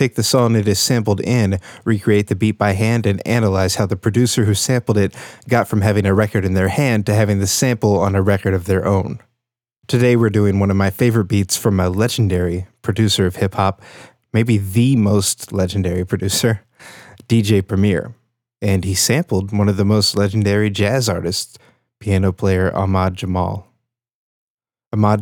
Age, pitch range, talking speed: 20-39, 100-115 Hz, 175 wpm